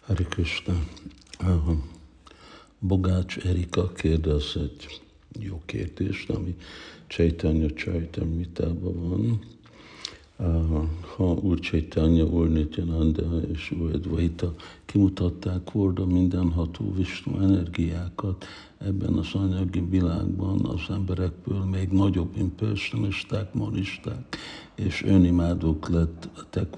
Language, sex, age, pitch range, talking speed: Hungarian, male, 60-79, 80-95 Hz, 85 wpm